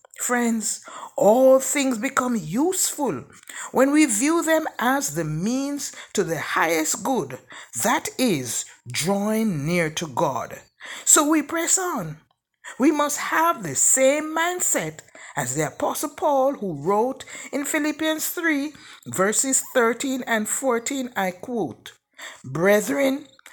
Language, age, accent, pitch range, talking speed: English, 60-79, Nigerian, 215-295 Hz, 120 wpm